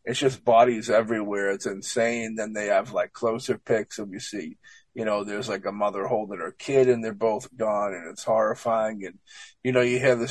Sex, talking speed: male, 215 wpm